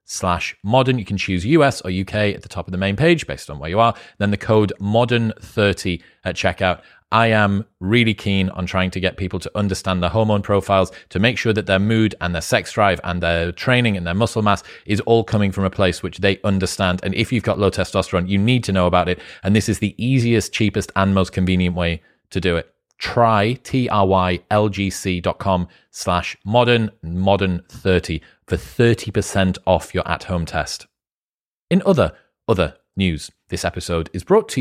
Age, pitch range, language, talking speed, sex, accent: 30-49, 95-115 Hz, English, 200 wpm, male, British